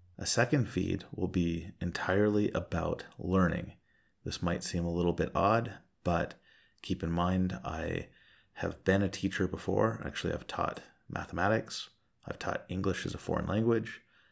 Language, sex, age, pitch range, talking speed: English, male, 30-49, 85-95 Hz, 150 wpm